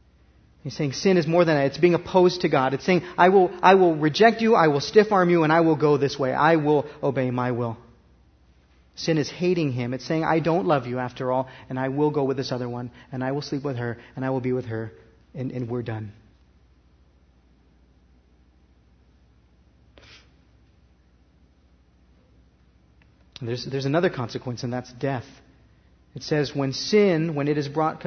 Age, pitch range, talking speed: 40-59, 125-175 Hz, 185 wpm